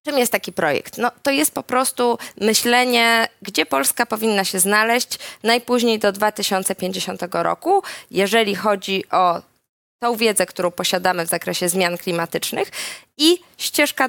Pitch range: 190-230 Hz